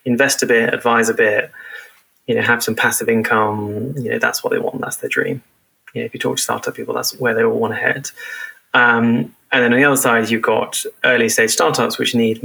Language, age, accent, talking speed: English, 20-39, British, 240 wpm